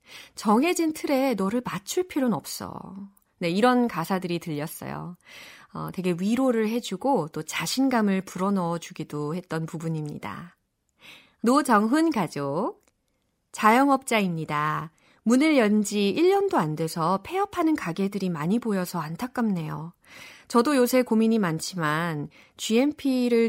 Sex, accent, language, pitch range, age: female, native, Korean, 175-265 Hz, 30-49